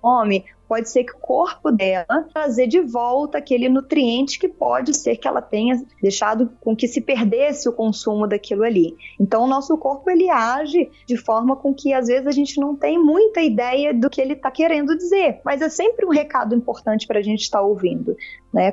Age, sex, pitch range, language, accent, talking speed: 20-39, female, 215-285 Hz, Portuguese, Brazilian, 205 wpm